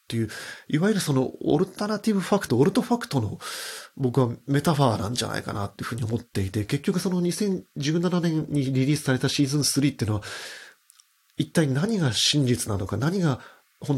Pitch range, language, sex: 115-155 Hz, Japanese, male